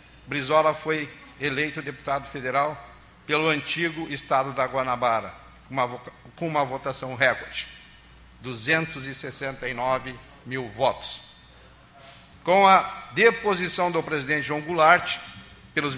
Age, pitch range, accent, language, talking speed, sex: 50-69, 130-160 Hz, Brazilian, Portuguese, 95 wpm, male